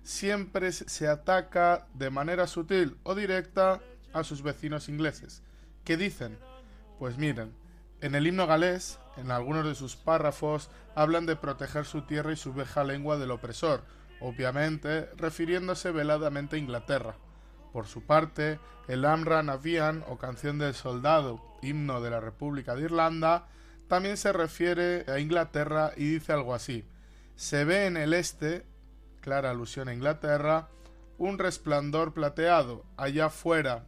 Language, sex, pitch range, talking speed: Spanish, male, 135-165 Hz, 140 wpm